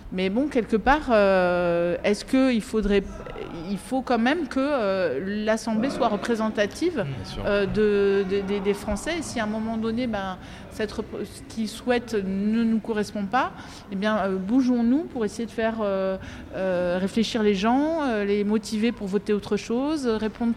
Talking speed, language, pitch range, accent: 175 wpm, French, 195-230 Hz, French